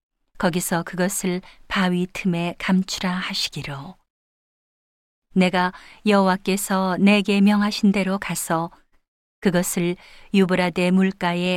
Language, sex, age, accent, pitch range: Korean, female, 40-59, native, 165-195 Hz